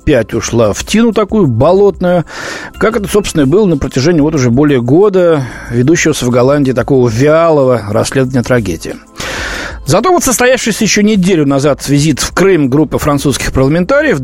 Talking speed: 150 wpm